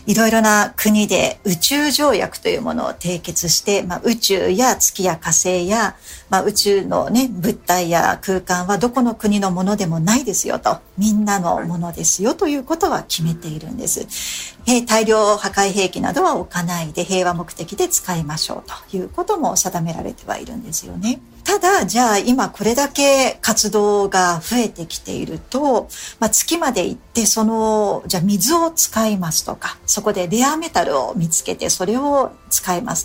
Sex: female